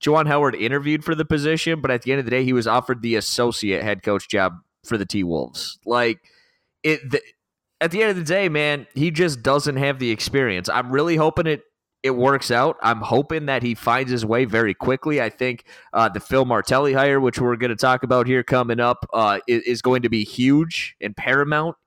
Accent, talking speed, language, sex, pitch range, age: American, 220 wpm, English, male, 115-145 Hz, 30-49